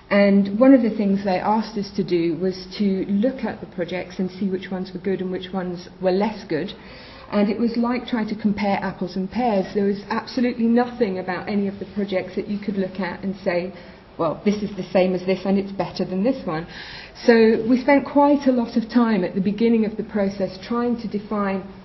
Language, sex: English, female